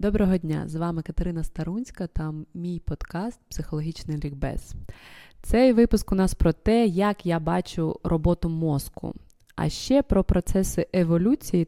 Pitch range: 170-215 Hz